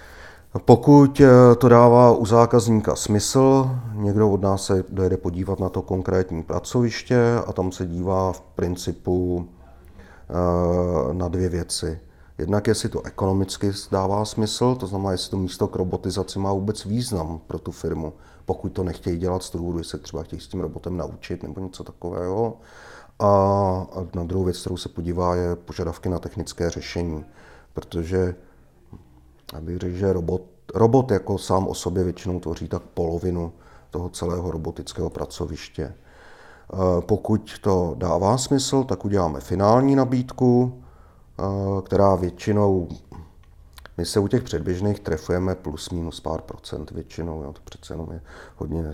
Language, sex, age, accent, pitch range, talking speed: Czech, male, 40-59, native, 85-105 Hz, 145 wpm